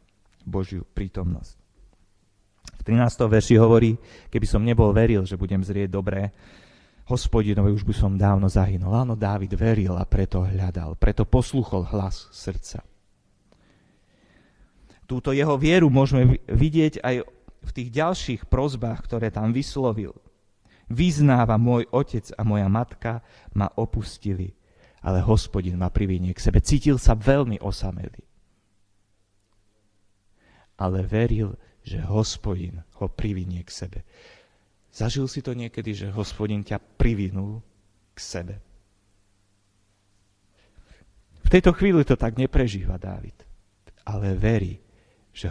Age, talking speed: 30-49, 115 wpm